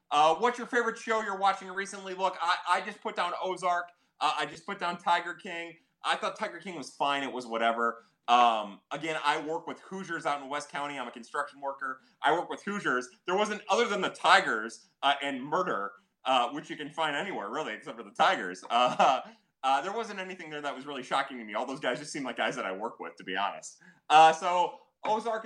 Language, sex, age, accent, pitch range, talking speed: English, male, 30-49, American, 135-185 Hz, 230 wpm